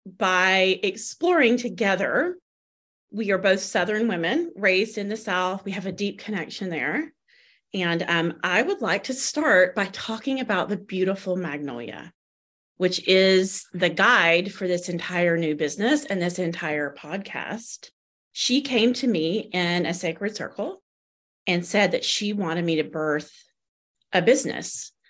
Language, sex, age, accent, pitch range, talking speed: English, female, 30-49, American, 170-225 Hz, 150 wpm